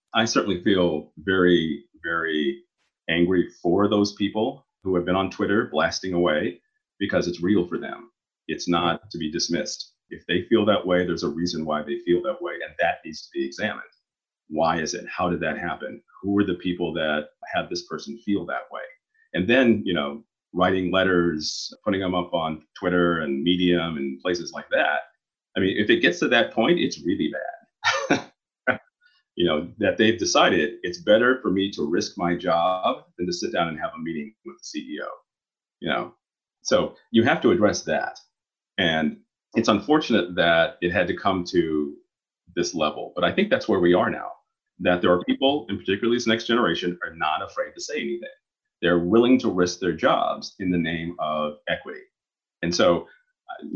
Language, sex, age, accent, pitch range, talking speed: English, male, 40-59, American, 85-120 Hz, 190 wpm